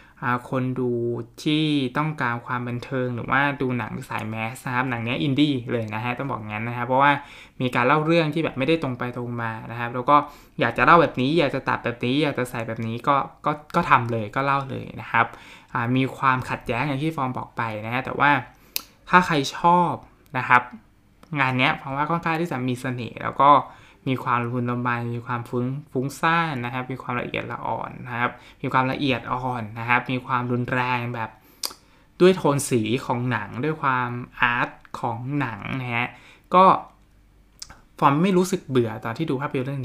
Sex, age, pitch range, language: male, 20-39, 120-145 Hz, Thai